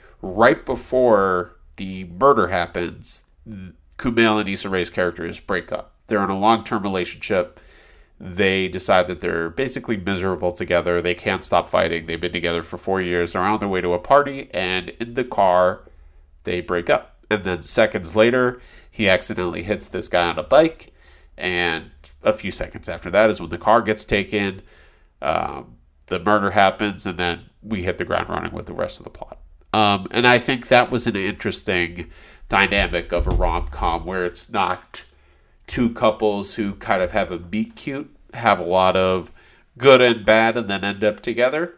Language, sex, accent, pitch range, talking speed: English, male, American, 90-110 Hz, 180 wpm